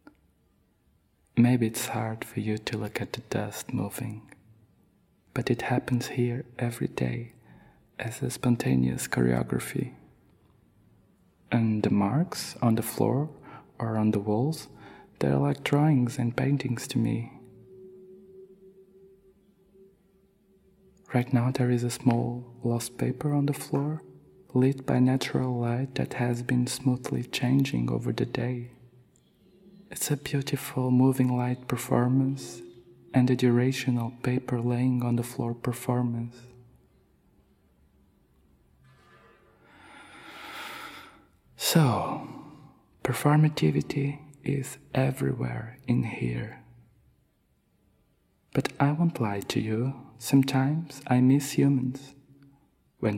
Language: Portuguese